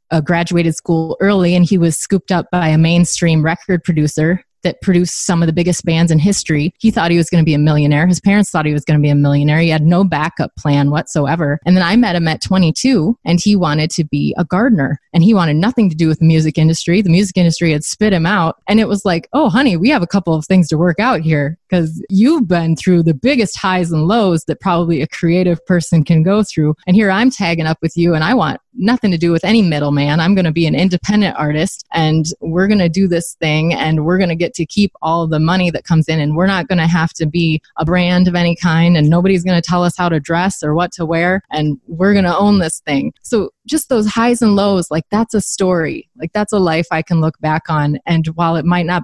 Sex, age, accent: female, 20-39, American